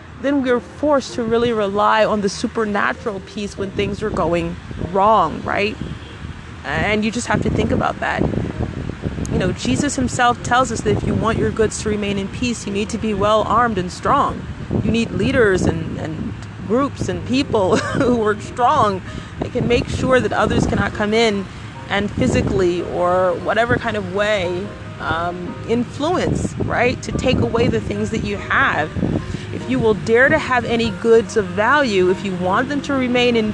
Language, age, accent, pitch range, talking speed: English, 30-49, American, 200-245 Hz, 185 wpm